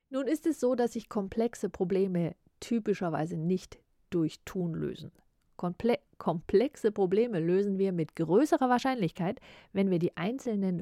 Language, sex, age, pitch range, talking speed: German, female, 40-59, 170-220 Hz, 135 wpm